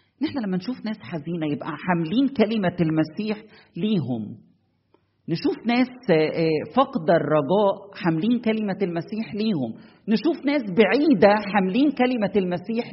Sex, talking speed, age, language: male, 110 wpm, 40-59, Arabic